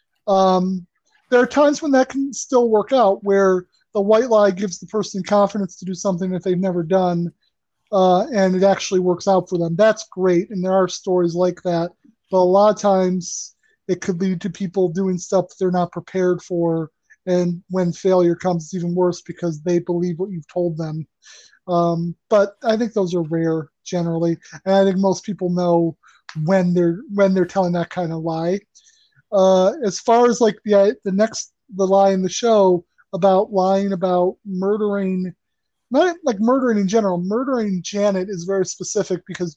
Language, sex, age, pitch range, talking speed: English, male, 30-49, 175-205 Hz, 185 wpm